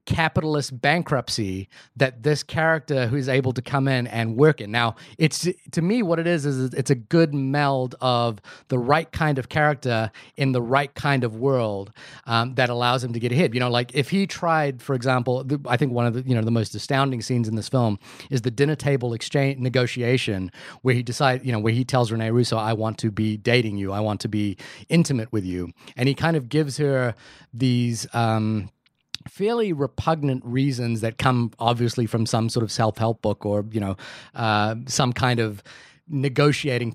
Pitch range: 115-145 Hz